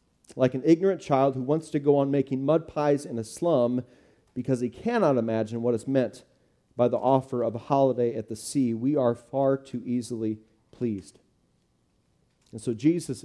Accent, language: American, English